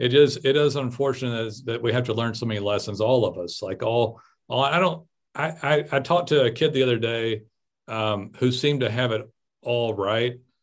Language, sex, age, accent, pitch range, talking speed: English, male, 50-69, American, 100-125 Hz, 220 wpm